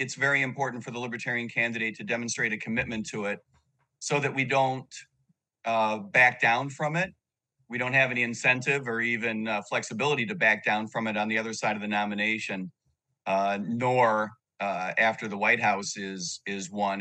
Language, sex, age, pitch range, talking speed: English, male, 40-59, 110-135 Hz, 185 wpm